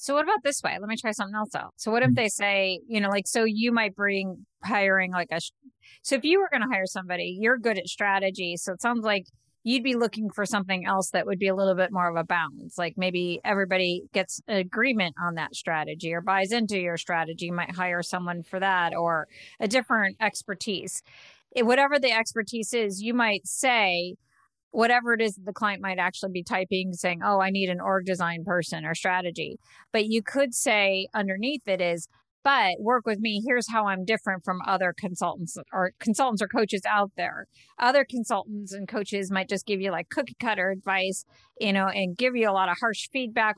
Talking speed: 215 wpm